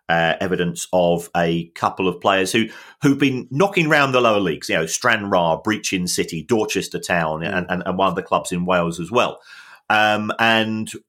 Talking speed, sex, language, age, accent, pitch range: 190 wpm, male, English, 40-59, British, 85-115 Hz